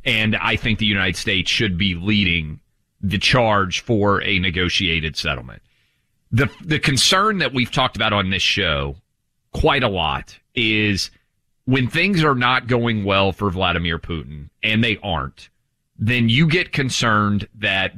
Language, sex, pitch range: English, male, 95-125 Hz